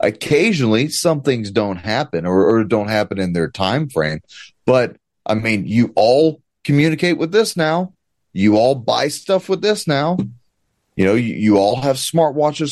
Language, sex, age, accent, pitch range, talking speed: English, male, 30-49, American, 110-165 Hz, 175 wpm